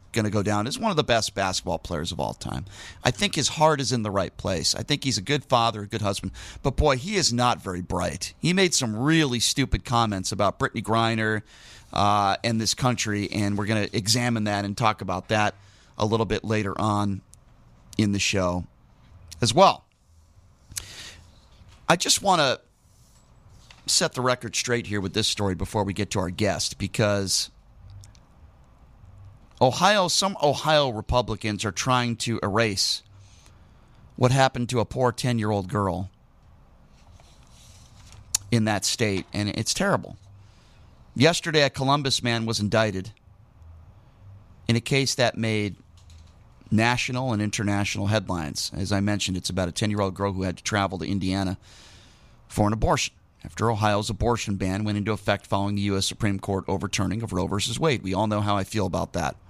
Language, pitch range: English, 95-115 Hz